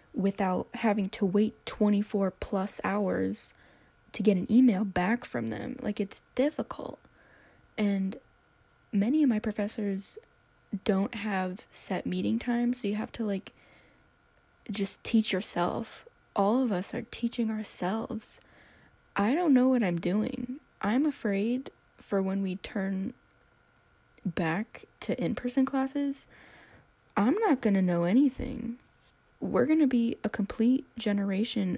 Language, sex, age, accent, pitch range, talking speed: English, female, 10-29, American, 195-250 Hz, 130 wpm